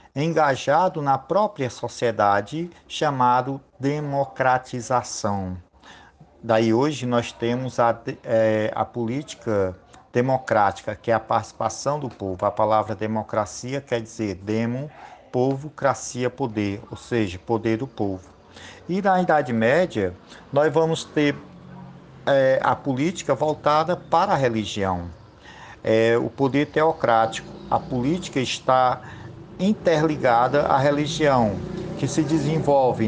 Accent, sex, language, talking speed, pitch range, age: Brazilian, male, Portuguese, 105 wpm, 110-145 Hz, 50-69